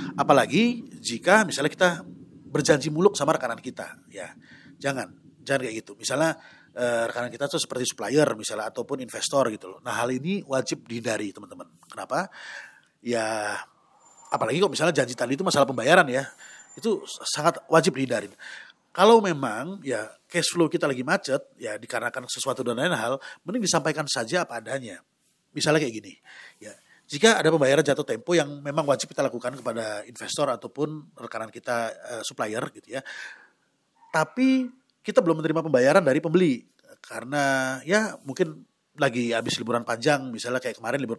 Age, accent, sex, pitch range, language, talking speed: 30-49, native, male, 125-175 Hz, Indonesian, 155 wpm